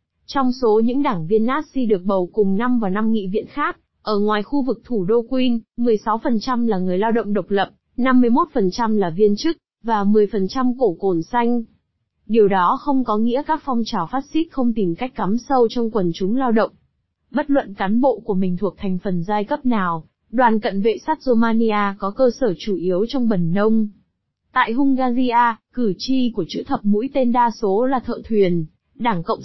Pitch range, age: 200-255 Hz, 20-39